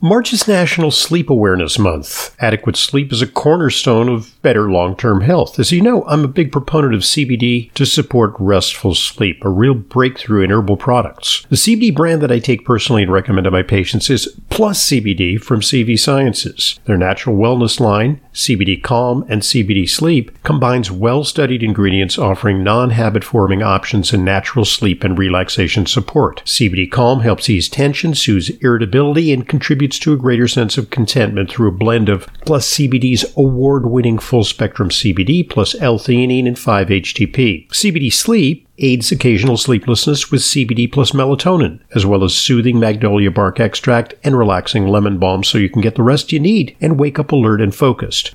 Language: English